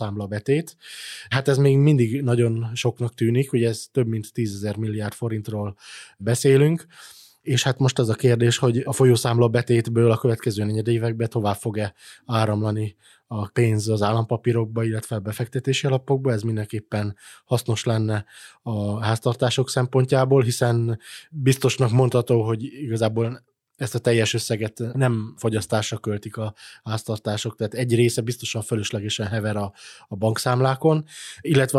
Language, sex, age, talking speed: Hungarian, male, 20-39, 135 wpm